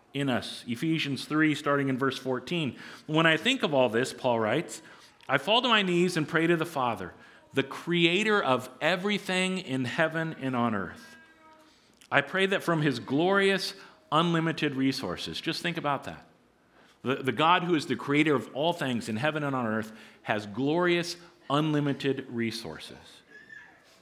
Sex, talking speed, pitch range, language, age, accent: male, 165 wpm, 125-165 Hz, English, 40-59, American